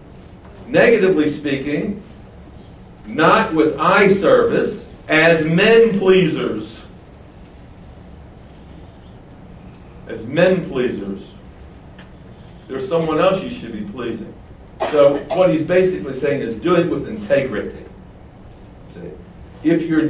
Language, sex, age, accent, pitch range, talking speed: English, male, 60-79, American, 115-170 Hz, 85 wpm